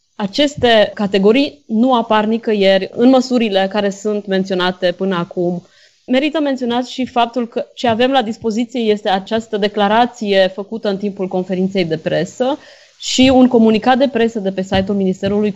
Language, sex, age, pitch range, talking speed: Romanian, female, 20-39, 190-235 Hz, 150 wpm